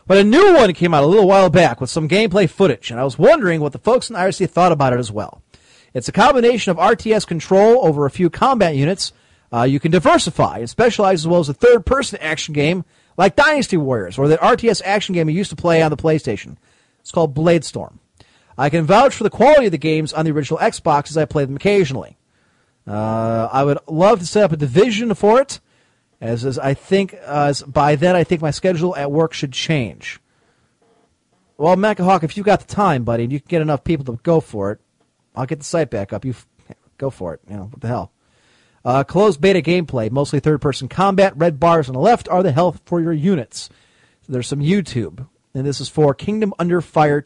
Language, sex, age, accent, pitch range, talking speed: English, male, 40-59, American, 130-185 Hz, 225 wpm